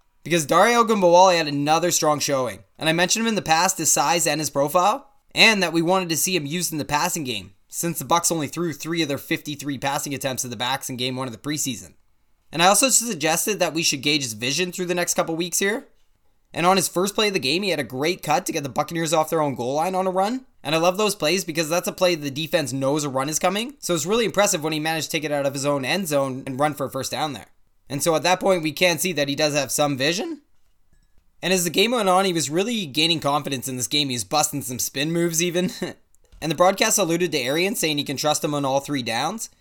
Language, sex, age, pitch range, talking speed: English, male, 20-39, 140-180 Hz, 275 wpm